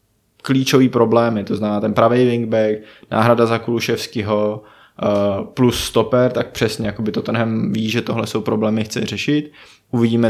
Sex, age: male, 20-39